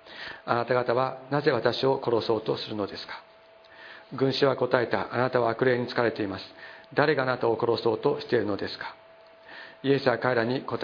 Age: 50-69